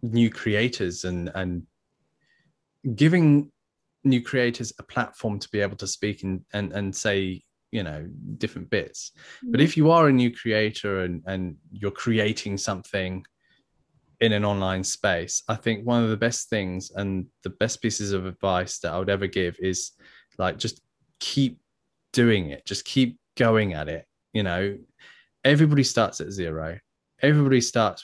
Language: English